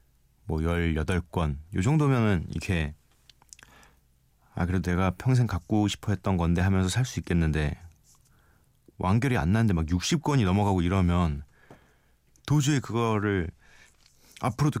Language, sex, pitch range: Korean, male, 80-110 Hz